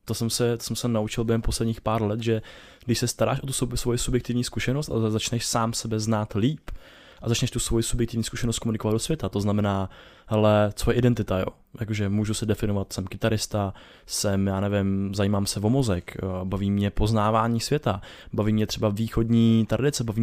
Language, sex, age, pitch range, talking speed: Czech, male, 20-39, 105-120 Hz, 190 wpm